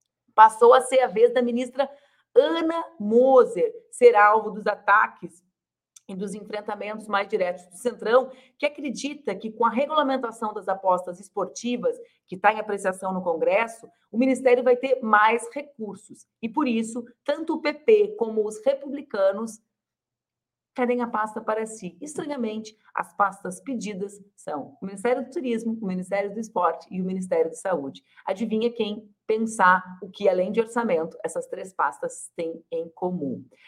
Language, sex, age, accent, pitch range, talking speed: Portuguese, female, 40-59, Brazilian, 195-260 Hz, 155 wpm